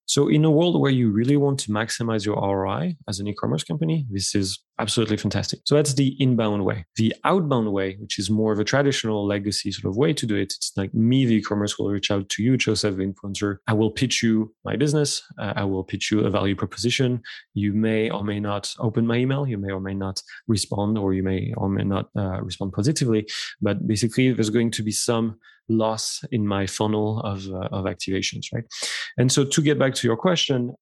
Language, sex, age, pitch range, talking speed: English, male, 20-39, 100-125 Hz, 225 wpm